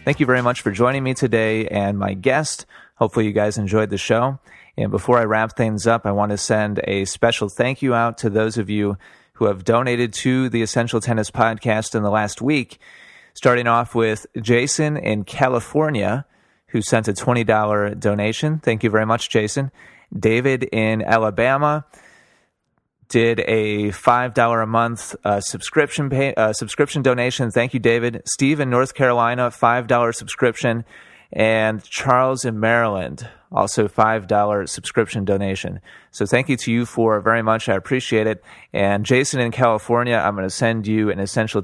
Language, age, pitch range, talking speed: English, 30-49, 110-125 Hz, 170 wpm